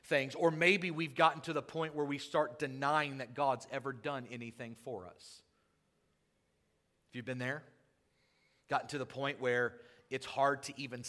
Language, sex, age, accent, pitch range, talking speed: English, male, 40-59, American, 125-150 Hz, 175 wpm